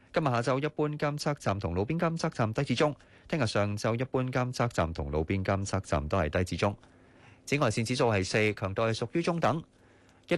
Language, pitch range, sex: Chinese, 100-150 Hz, male